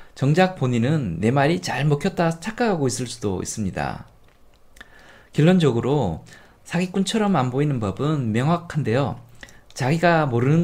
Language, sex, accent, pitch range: Korean, male, native, 115-170 Hz